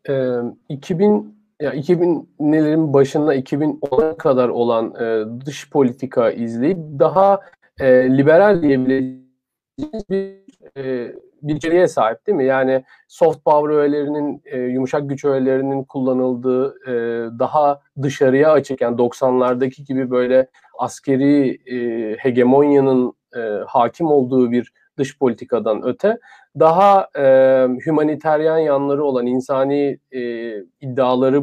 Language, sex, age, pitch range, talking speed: Turkish, male, 40-59, 125-155 Hz, 105 wpm